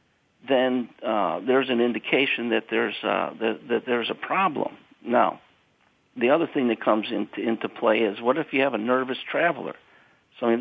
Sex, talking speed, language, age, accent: male, 180 wpm, English, 50-69, American